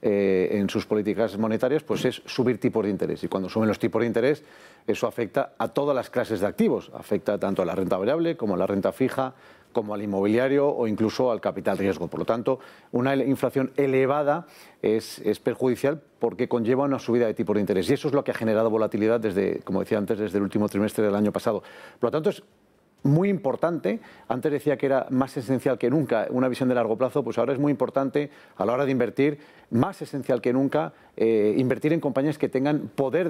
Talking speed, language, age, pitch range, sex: 220 wpm, Spanish, 40-59, 110-135 Hz, male